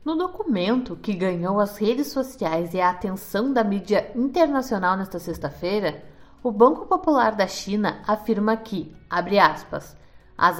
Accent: Brazilian